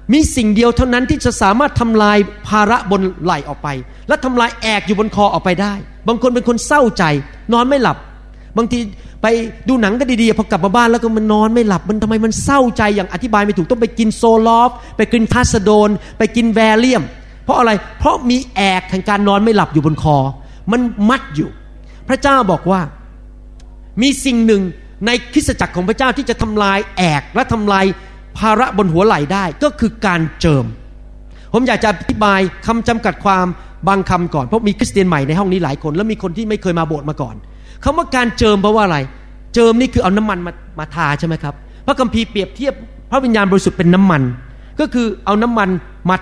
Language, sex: Thai, male